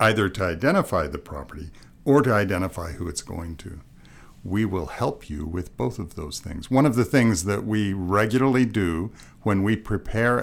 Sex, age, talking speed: male, 60-79, 185 wpm